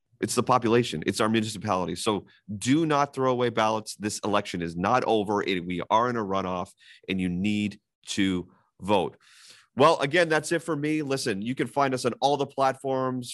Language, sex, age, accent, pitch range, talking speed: English, male, 30-49, American, 105-130 Hz, 190 wpm